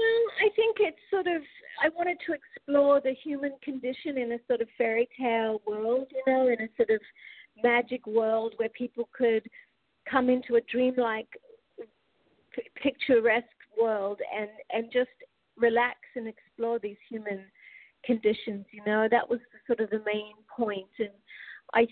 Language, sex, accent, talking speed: English, female, American, 155 wpm